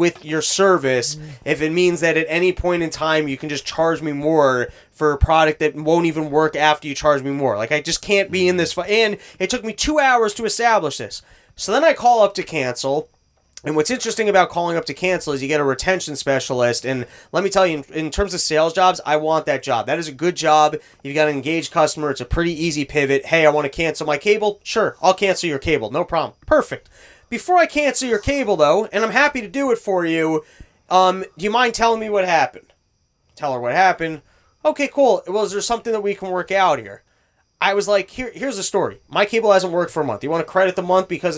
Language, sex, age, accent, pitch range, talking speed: English, male, 20-39, American, 150-195 Hz, 245 wpm